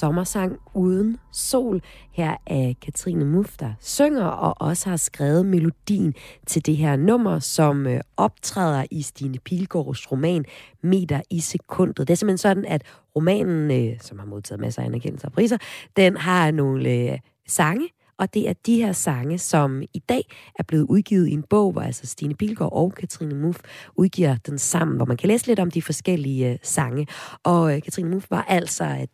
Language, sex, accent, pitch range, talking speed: Danish, female, native, 140-195 Hz, 175 wpm